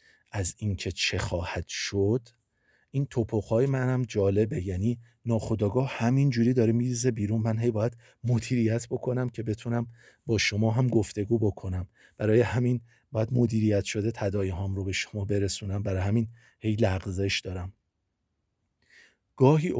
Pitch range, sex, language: 95-120 Hz, male, Persian